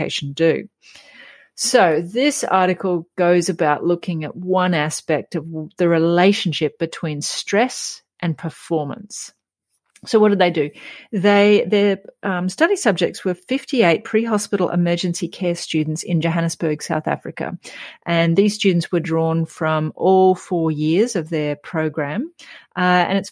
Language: English